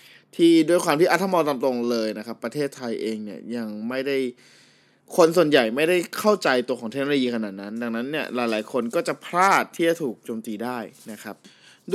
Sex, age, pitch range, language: male, 20-39, 115-155 Hz, Thai